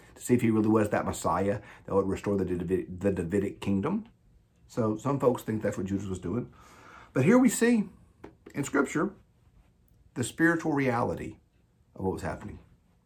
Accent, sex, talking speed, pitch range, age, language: American, male, 165 wpm, 95-125 Hz, 50-69, English